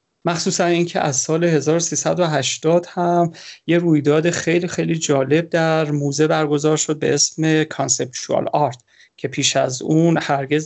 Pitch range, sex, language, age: 140-165 Hz, male, Persian, 30-49